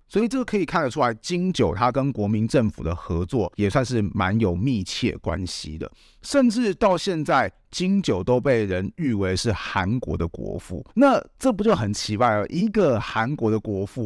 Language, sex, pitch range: Chinese, male, 100-135 Hz